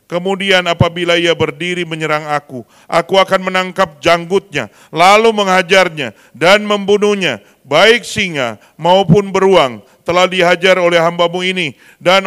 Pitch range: 155-195 Hz